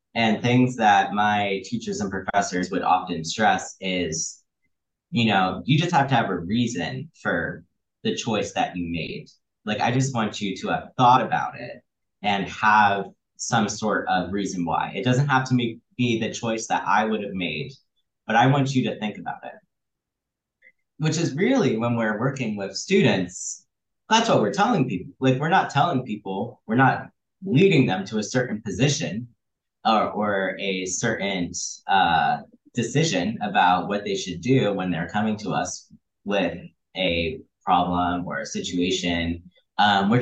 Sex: male